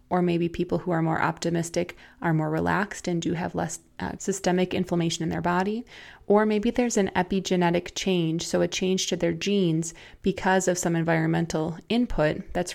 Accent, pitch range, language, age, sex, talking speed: American, 170-195 Hz, English, 20-39, female, 180 wpm